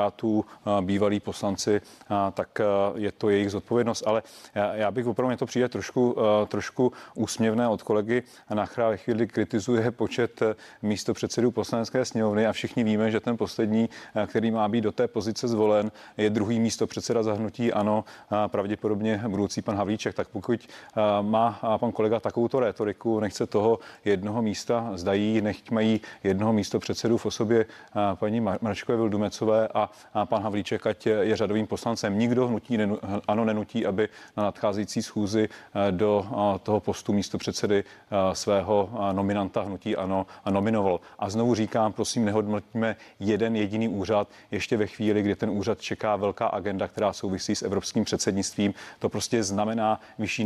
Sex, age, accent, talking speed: male, 30-49, native, 150 wpm